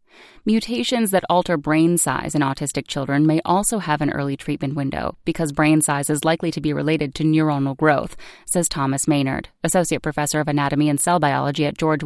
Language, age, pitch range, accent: English, 30-49, 145-180 Hz, American